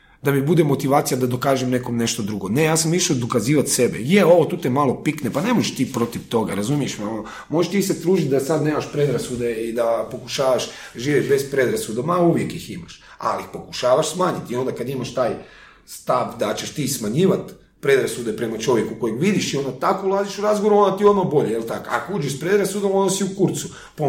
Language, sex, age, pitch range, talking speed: Croatian, male, 40-59, 130-175 Hz, 210 wpm